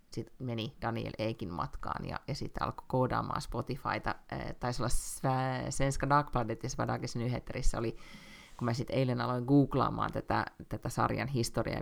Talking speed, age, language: 145 wpm, 30-49, Finnish